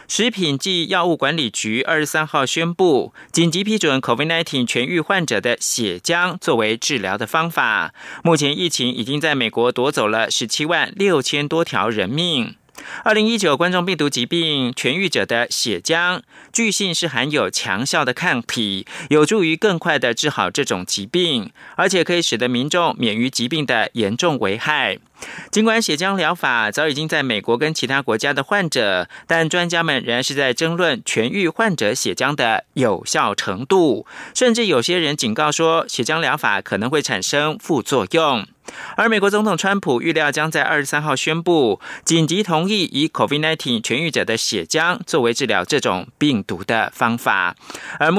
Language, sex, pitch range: German, male, 130-175 Hz